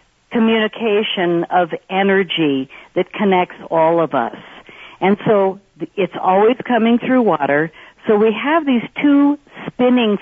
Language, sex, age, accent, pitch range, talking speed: English, female, 50-69, American, 175-230 Hz, 125 wpm